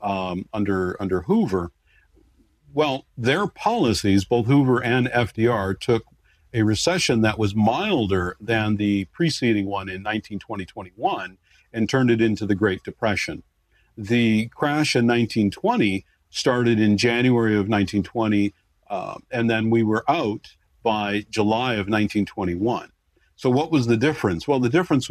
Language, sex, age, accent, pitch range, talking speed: English, male, 50-69, American, 105-120 Hz, 135 wpm